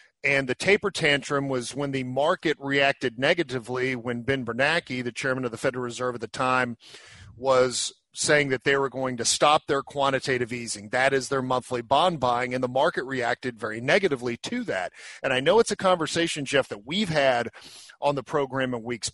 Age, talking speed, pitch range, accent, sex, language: 40-59, 195 wpm, 125-150 Hz, American, male, English